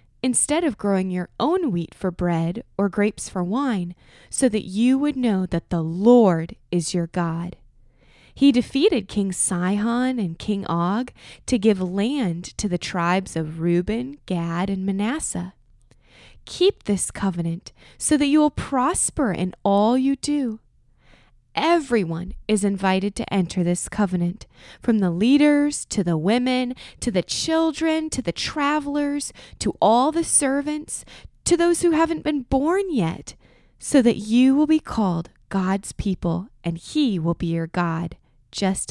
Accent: American